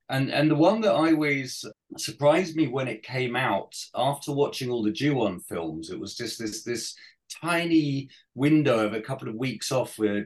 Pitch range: 105-130 Hz